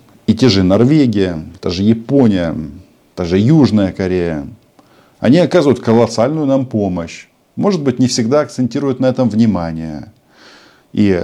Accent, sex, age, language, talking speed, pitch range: native, male, 50-69, Russian, 135 wpm, 90-120 Hz